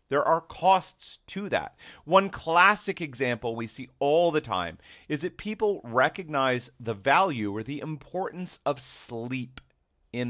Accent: American